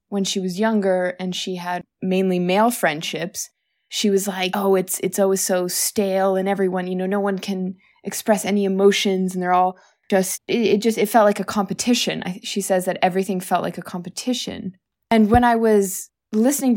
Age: 20-39